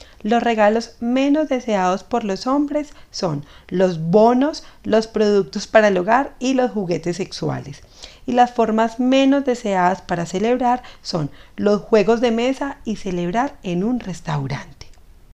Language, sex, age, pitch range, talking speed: Spanish, female, 40-59, 185-250 Hz, 140 wpm